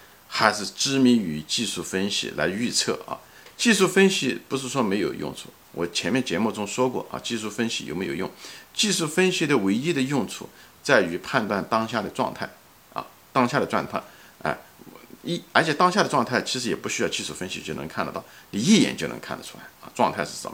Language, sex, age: Chinese, male, 50-69